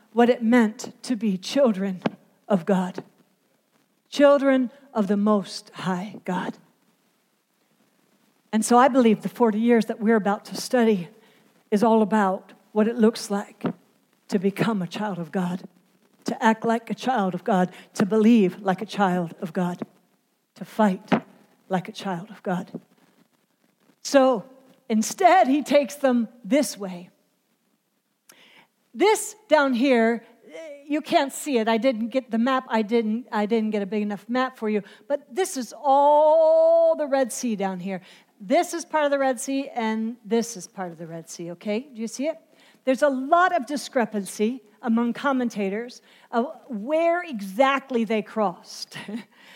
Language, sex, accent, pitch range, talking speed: English, female, American, 205-260 Hz, 160 wpm